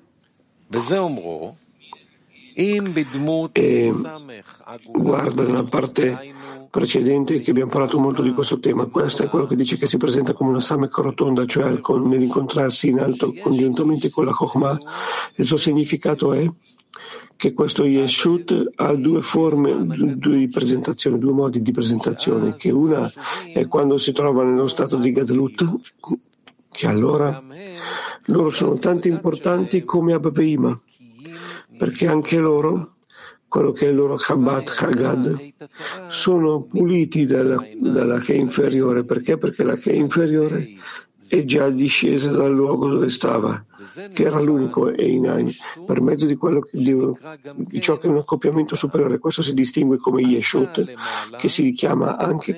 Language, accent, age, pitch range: Italian, native, 50-69, 130-160 Hz